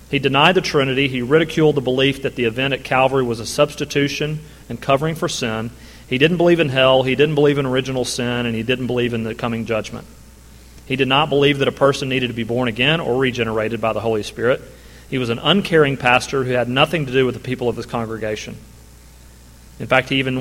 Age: 40-59